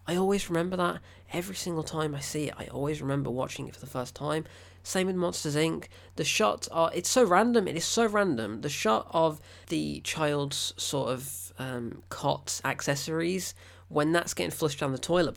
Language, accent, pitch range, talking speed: English, British, 120-160 Hz, 195 wpm